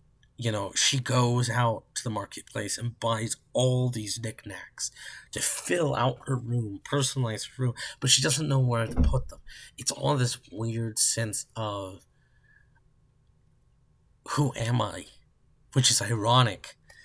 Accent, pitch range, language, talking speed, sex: American, 100-125 Hz, English, 140 wpm, male